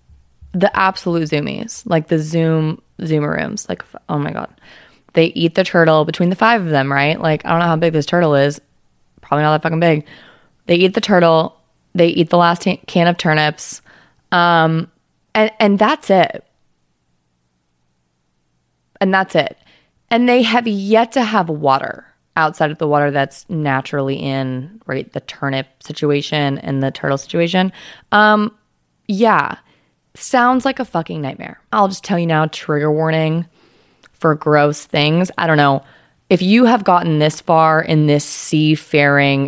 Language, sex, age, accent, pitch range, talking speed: English, female, 20-39, American, 140-180 Hz, 160 wpm